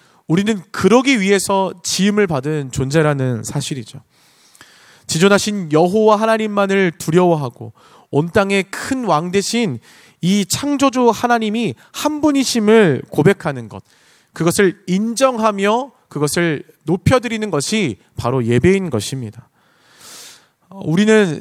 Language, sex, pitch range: Korean, male, 150-220 Hz